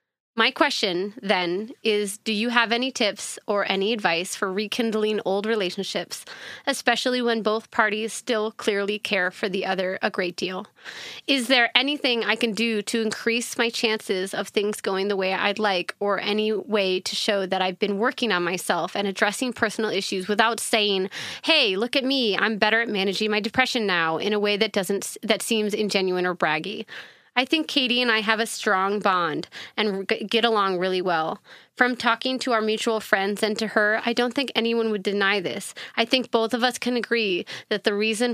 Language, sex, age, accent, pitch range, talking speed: English, female, 30-49, American, 200-235 Hz, 195 wpm